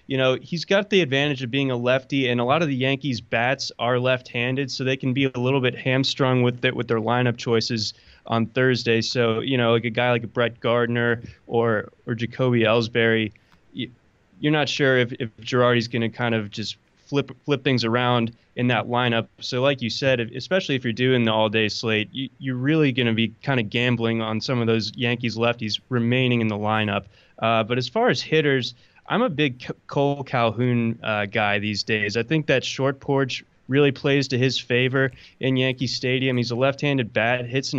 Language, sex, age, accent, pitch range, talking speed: English, male, 20-39, American, 115-135 Hz, 210 wpm